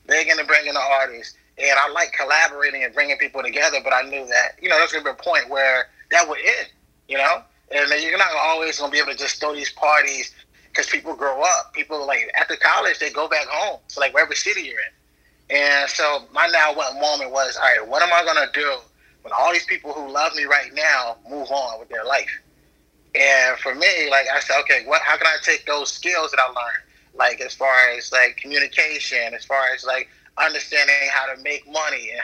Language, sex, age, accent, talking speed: English, male, 20-39, American, 235 wpm